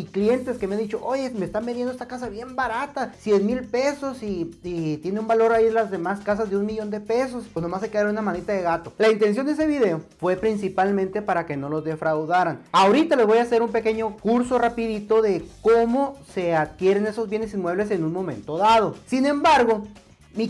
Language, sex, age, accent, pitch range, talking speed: Spanish, male, 30-49, Mexican, 195-250 Hz, 215 wpm